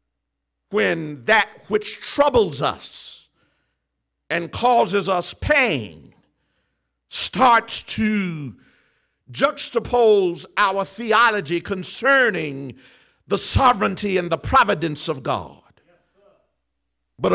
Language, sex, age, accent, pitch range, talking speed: English, male, 50-69, American, 165-235 Hz, 80 wpm